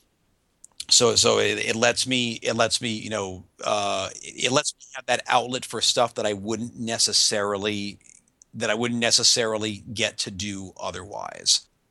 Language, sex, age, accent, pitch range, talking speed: English, male, 50-69, American, 105-135 Hz, 160 wpm